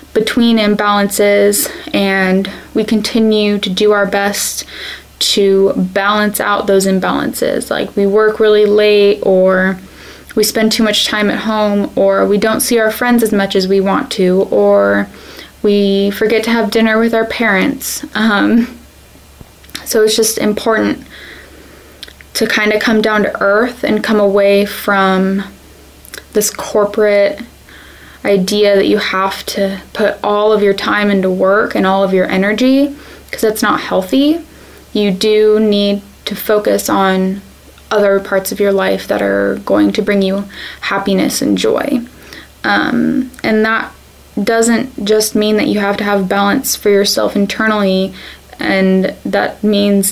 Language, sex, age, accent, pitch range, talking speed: English, female, 10-29, American, 195-220 Hz, 150 wpm